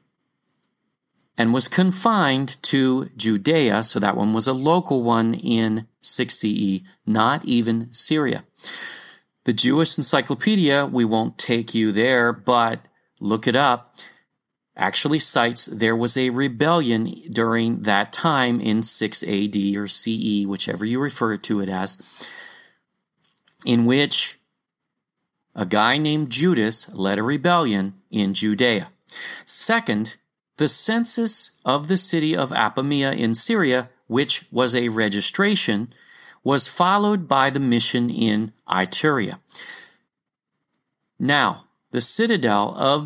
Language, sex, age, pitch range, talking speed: English, male, 40-59, 110-155 Hz, 120 wpm